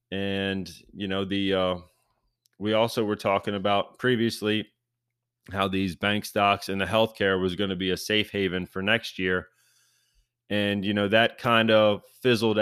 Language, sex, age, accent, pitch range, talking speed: English, male, 30-49, American, 100-115 Hz, 165 wpm